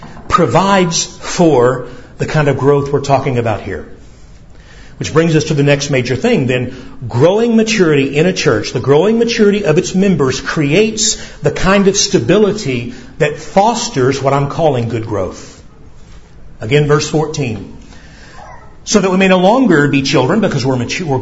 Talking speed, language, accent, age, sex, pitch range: 160 wpm, English, American, 50-69, male, 135-195 Hz